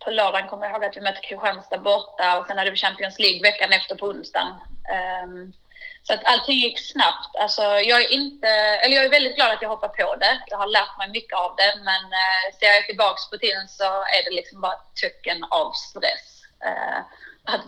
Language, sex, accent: Swedish, female, native